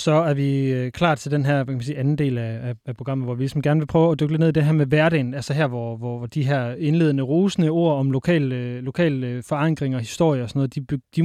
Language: Danish